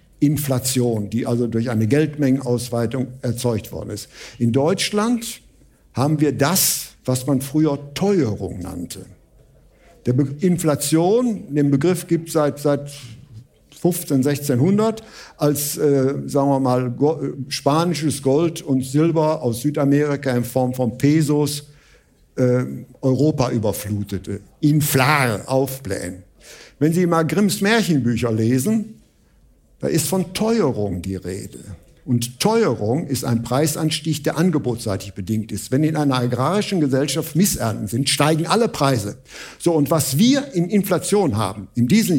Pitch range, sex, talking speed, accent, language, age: 120-165 Hz, male, 130 wpm, German, German, 60-79